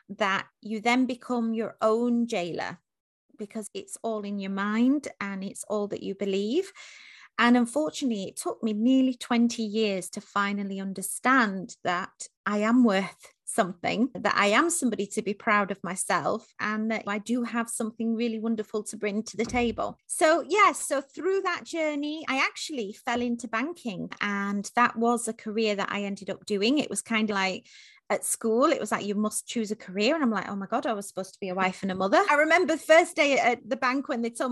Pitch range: 205-250 Hz